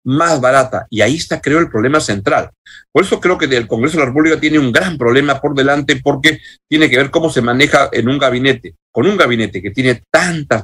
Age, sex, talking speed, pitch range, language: 50-69, male, 225 wpm, 115-150 Hz, Spanish